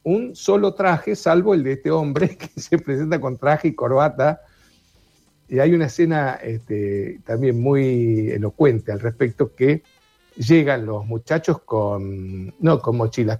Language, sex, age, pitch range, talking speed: Spanish, male, 60-79, 110-155 Hz, 150 wpm